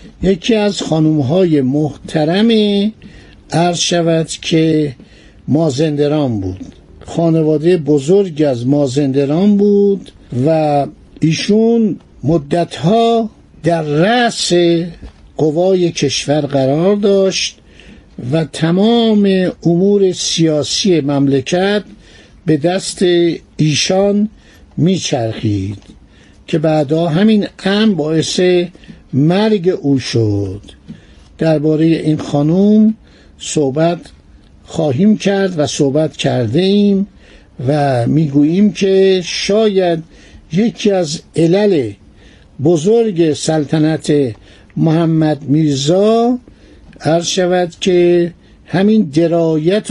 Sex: male